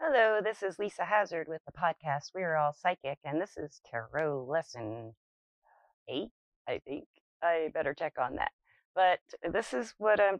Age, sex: 30-49, female